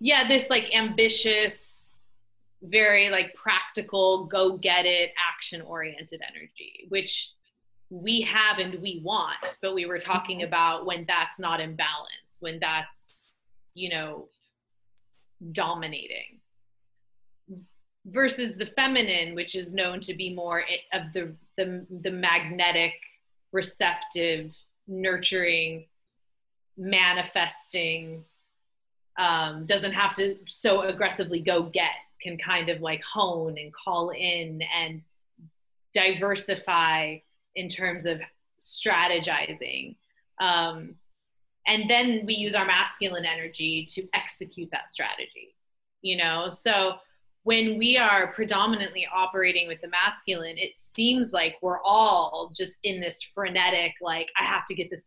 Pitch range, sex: 165-200 Hz, female